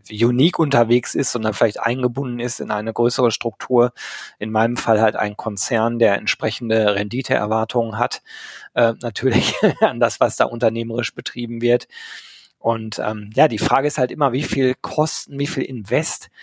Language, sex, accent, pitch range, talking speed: German, male, German, 115-135 Hz, 160 wpm